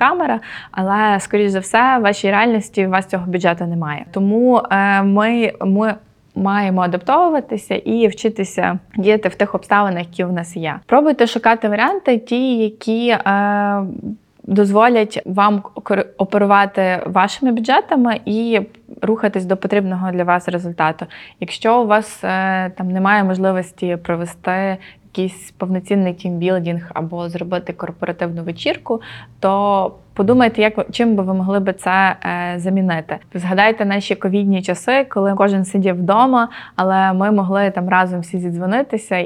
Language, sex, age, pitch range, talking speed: Ukrainian, female, 20-39, 180-220 Hz, 135 wpm